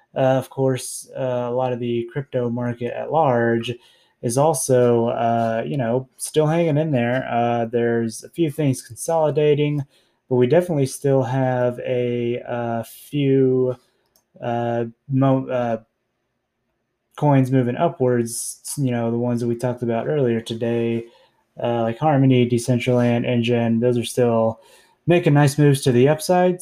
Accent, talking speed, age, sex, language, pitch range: American, 145 wpm, 20-39, male, English, 120-150 Hz